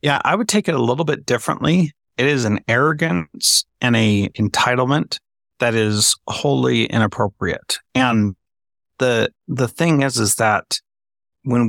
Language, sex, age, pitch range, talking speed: English, male, 30-49, 105-125 Hz, 145 wpm